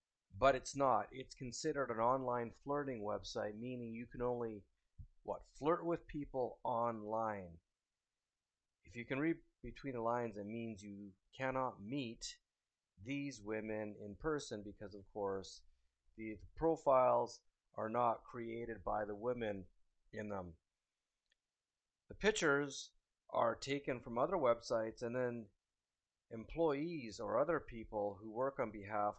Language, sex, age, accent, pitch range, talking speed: English, male, 40-59, American, 105-135 Hz, 135 wpm